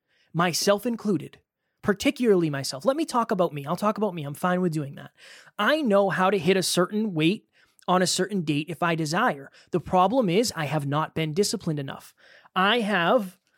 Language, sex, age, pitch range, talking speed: English, male, 20-39, 160-205 Hz, 195 wpm